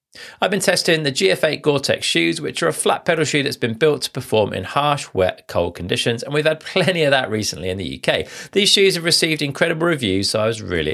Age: 40-59